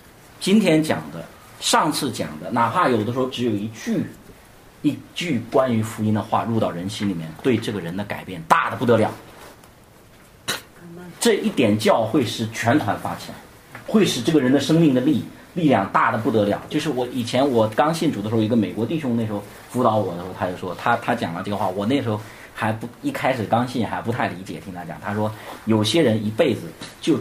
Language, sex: Chinese, male